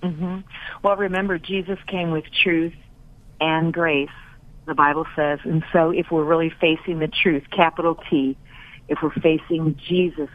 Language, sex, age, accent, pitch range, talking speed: English, female, 50-69, American, 145-170 Hz, 150 wpm